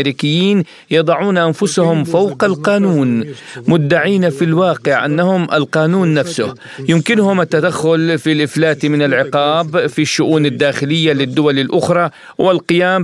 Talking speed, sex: 100 wpm, male